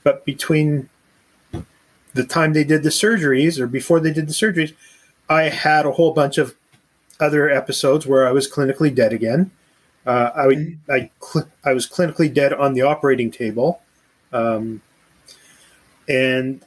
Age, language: 30-49, English